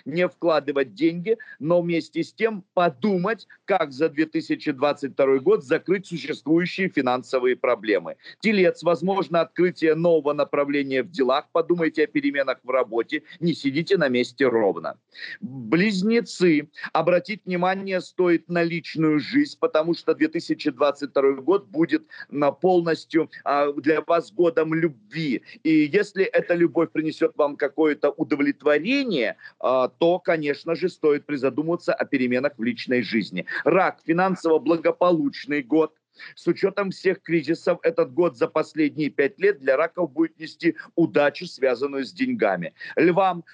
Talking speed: 125 wpm